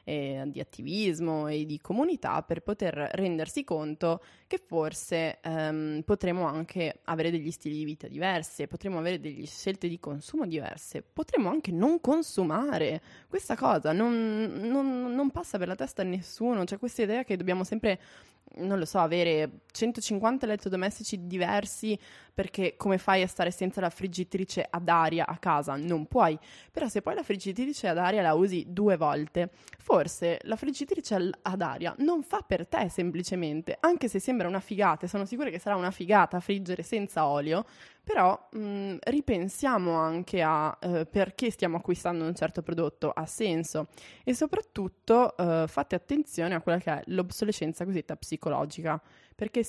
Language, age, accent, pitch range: Italian, 20-39, native, 160-205 Hz